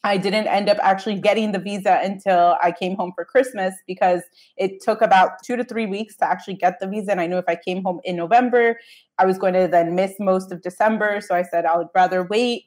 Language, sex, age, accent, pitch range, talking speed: English, female, 20-39, American, 185-225 Hz, 245 wpm